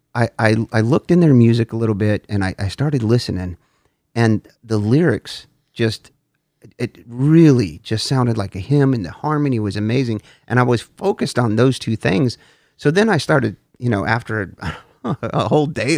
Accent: American